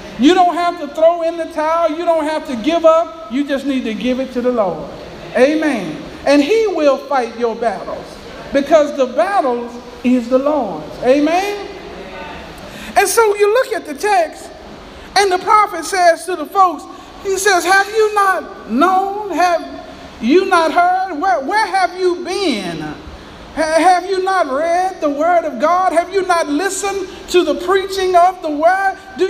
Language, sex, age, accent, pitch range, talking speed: English, male, 50-69, American, 310-380 Hz, 175 wpm